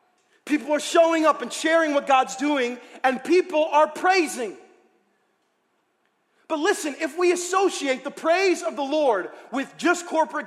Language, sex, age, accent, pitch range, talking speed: English, male, 40-59, American, 275-370 Hz, 150 wpm